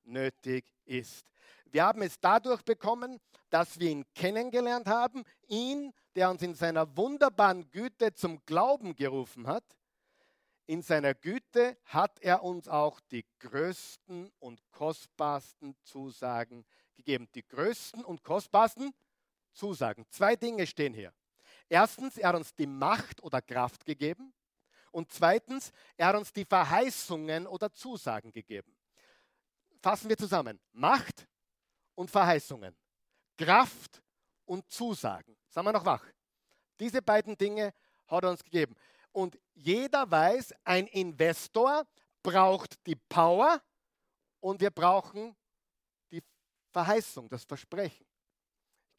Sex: male